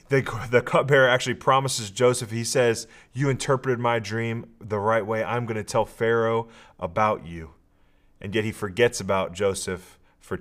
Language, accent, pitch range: English, American, 105-125 Hz